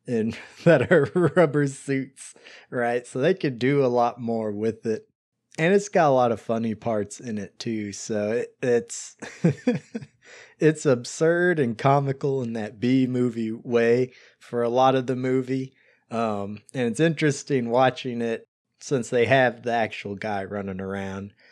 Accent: American